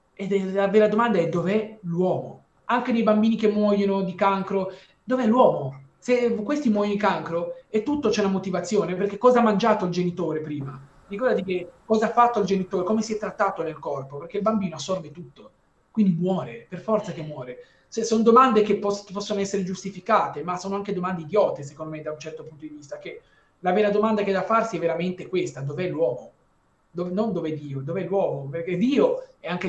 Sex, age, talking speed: male, 30-49, 200 wpm